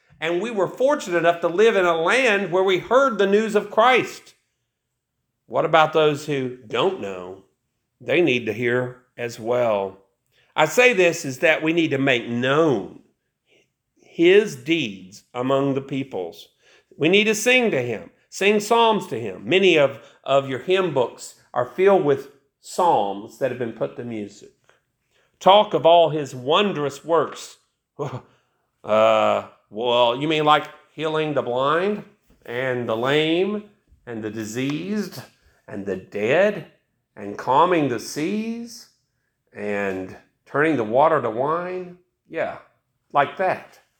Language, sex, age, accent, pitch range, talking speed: English, male, 50-69, American, 130-205 Hz, 145 wpm